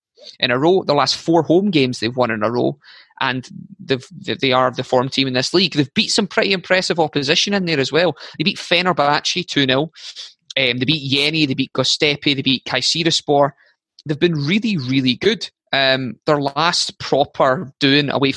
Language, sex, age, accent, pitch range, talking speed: English, male, 20-39, British, 130-165 Hz, 190 wpm